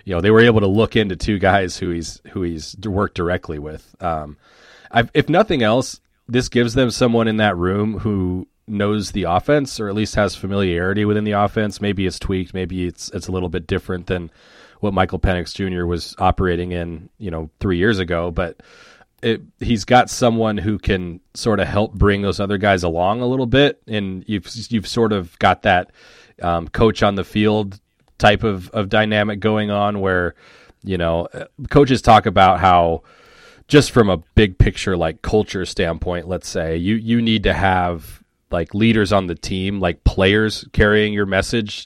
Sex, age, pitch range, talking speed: male, 30-49, 90-110 Hz, 190 wpm